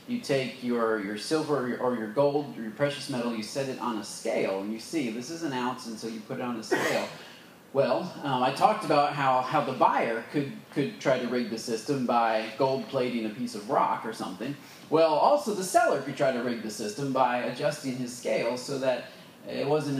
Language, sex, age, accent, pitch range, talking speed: English, male, 30-49, American, 125-175 Hz, 235 wpm